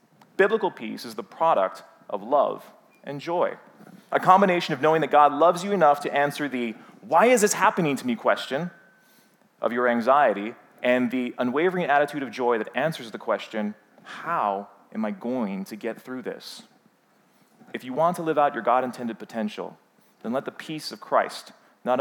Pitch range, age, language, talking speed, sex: 125-175 Hz, 30-49, English, 175 wpm, male